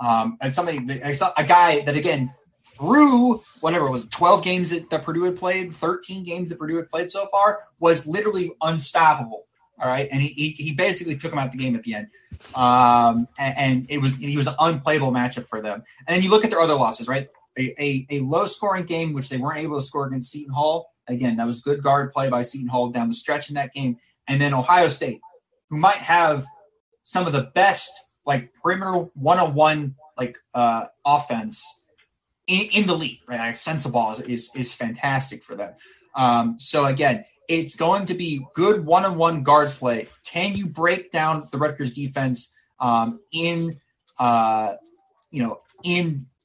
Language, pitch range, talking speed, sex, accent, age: English, 130-175 Hz, 190 wpm, male, American, 20-39